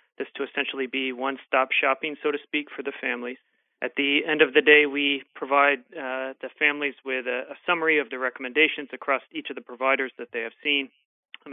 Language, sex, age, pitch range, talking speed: English, male, 30-49, 130-145 Hz, 210 wpm